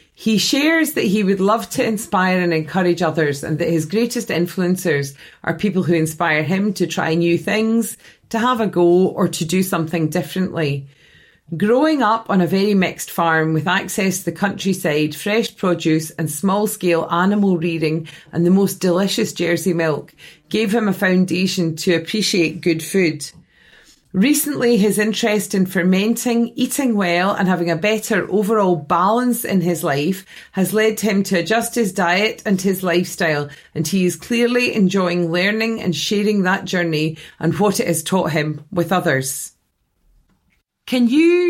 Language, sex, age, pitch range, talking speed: English, female, 30-49, 165-210 Hz, 165 wpm